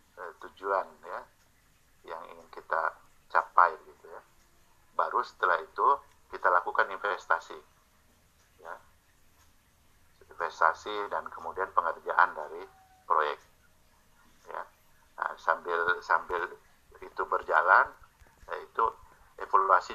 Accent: native